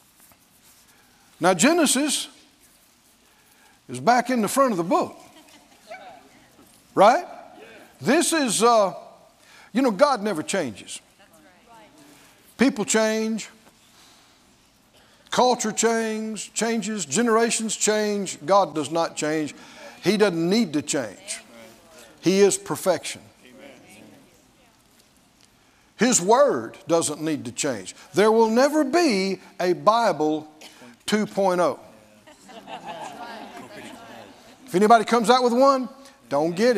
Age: 60-79